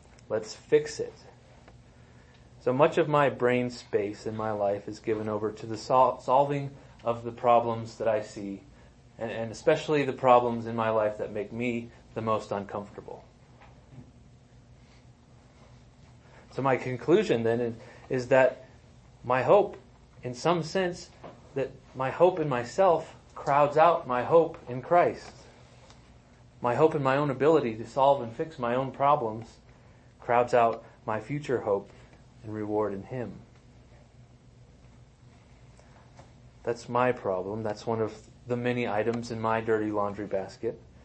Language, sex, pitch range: English, male, 115-130 Hz